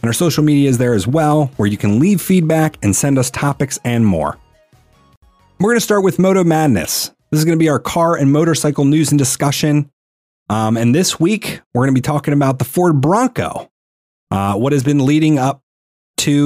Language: English